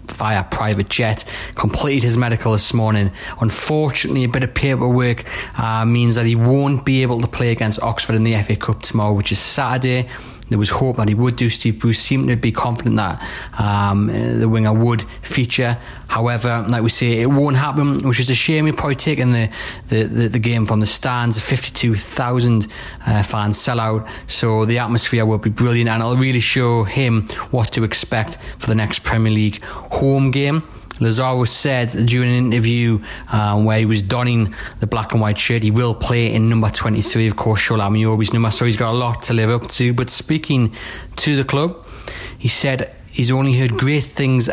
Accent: British